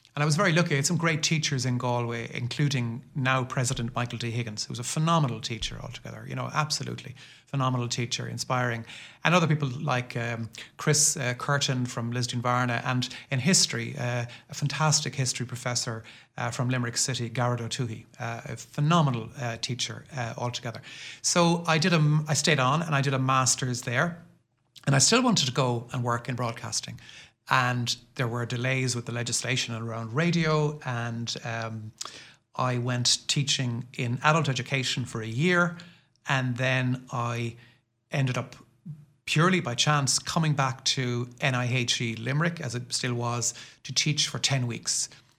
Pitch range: 120-145 Hz